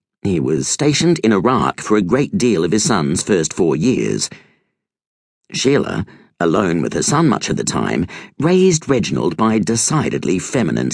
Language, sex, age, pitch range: English, male, 50-69, 115-155 Hz